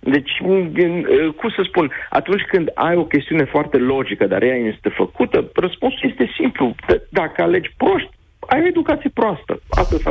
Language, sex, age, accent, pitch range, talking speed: Romanian, male, 40-59, native, 115-180 Hz, 160 wpm